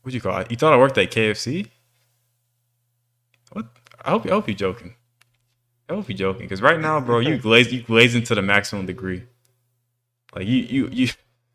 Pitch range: 100-125 Hz